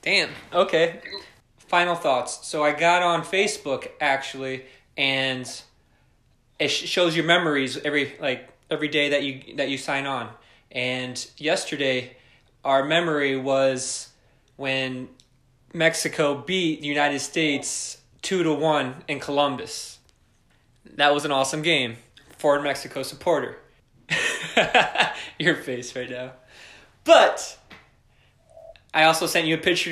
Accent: American